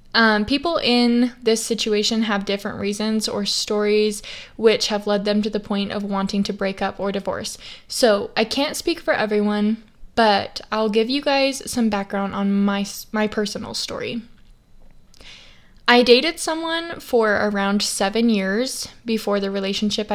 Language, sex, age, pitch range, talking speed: English, female, 10-29, 205-250 Hz, 155 wpm